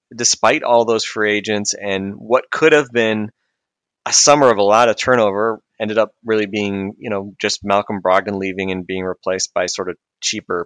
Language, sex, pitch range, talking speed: English, male, 90-105 Hz, 190 wpm